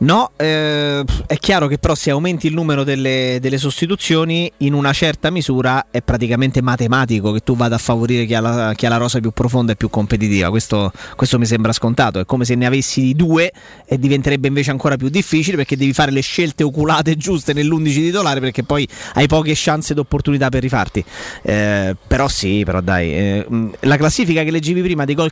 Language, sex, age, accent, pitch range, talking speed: Italian, male, 30-49, native, 125-150 Hz, 200 wpm